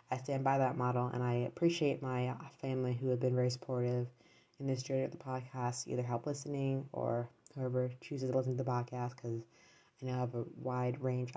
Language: English